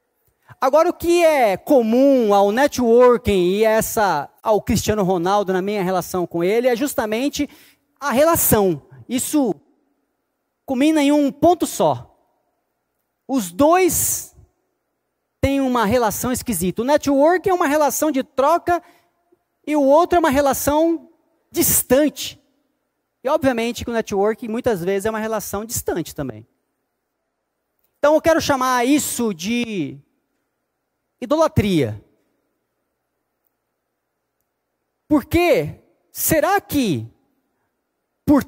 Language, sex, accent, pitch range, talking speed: Portuguese, male, Brazilian, 210-295 Hz, 110 wpm